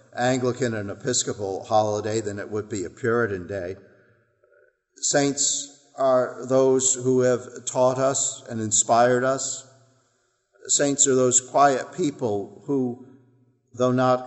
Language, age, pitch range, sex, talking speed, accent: English, 50-69, 110-125 Hz, male, 120 wpm, American